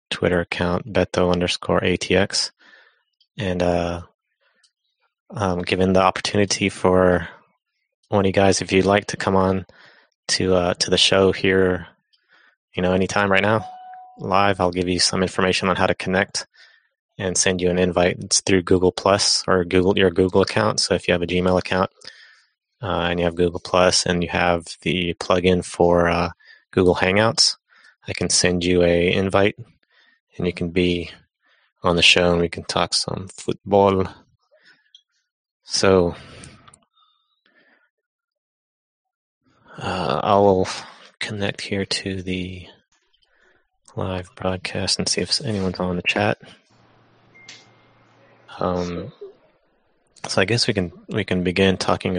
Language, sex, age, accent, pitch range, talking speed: English, male, 20-39, American, 90-95 Hz, 140 wpm